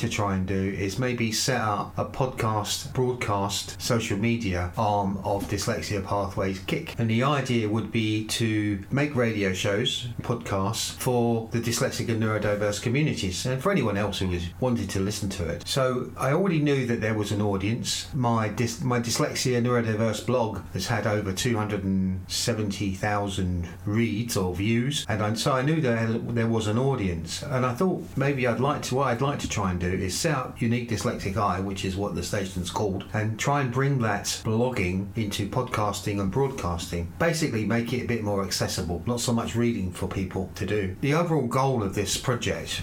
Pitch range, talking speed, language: 100-125 Hz, 190 wpm, English